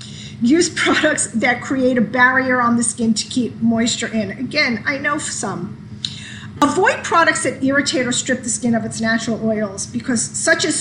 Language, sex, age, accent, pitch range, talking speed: English, female, 40-59, American, 230-285 Hz, 180 wpm